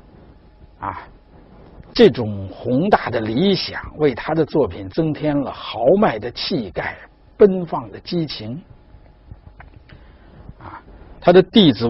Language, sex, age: Chinese, male, 60-79